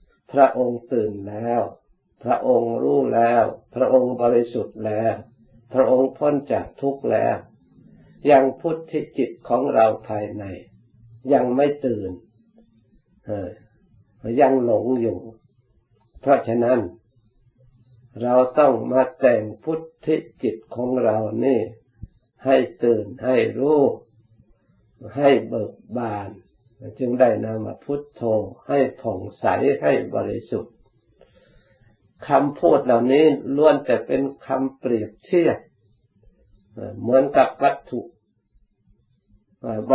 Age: 60-79